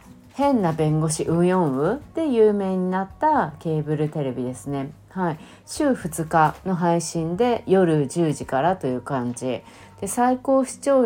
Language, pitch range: Japanese, 140-195 Hz